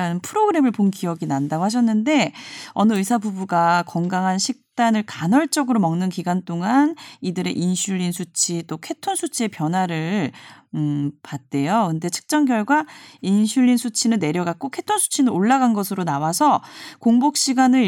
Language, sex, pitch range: Korean, female, 180-265 Hz